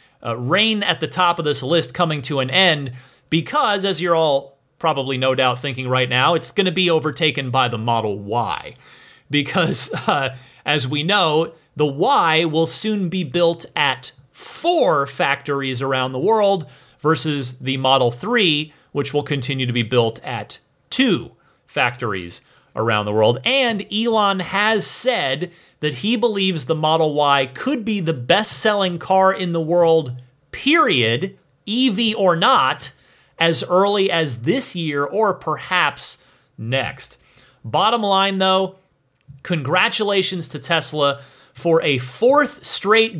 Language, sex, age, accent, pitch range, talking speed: English, male, 30-49, American, 135-195 Hz, 145 wpm